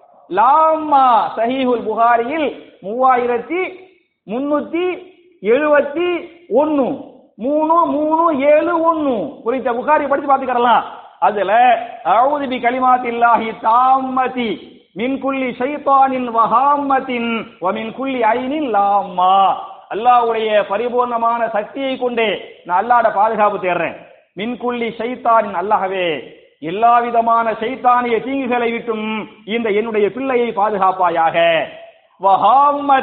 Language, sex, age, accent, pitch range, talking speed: Tamil, male, 50-69, native, 225-290 Hz, 45 wpm